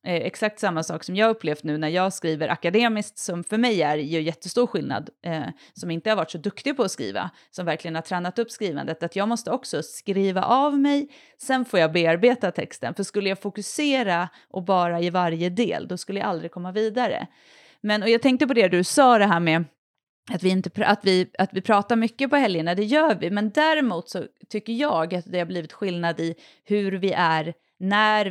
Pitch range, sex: 170-225 Hz, female